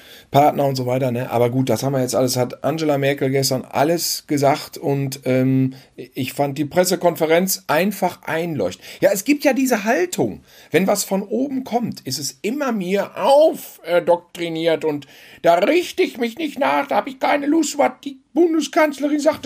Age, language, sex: 50-69, German, male